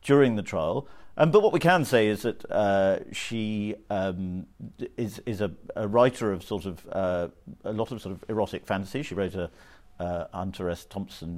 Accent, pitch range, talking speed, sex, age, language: British, 90-115 Hz, 195 wpm, male, 50-69, English